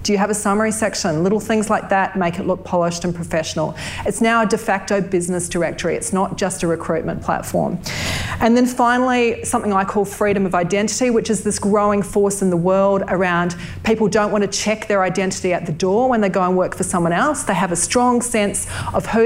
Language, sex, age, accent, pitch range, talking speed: English, female, 40-59, Australian, 175-210 Hz, 225 wpm